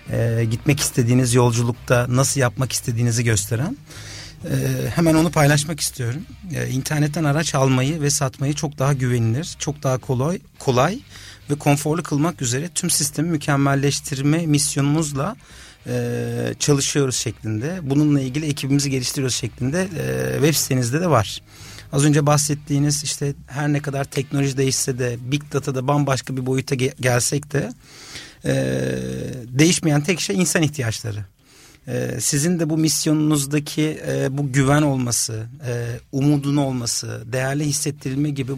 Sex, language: male, Turkish